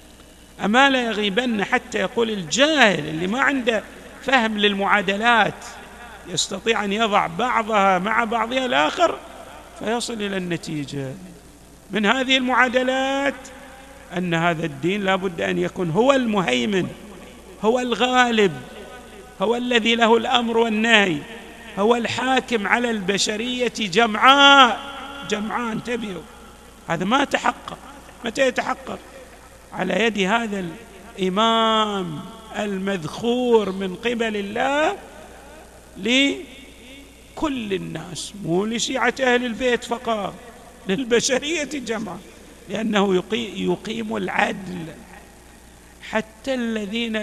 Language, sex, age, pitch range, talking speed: Arabic, male, 50-69, 190-240 Hz, 95 wpm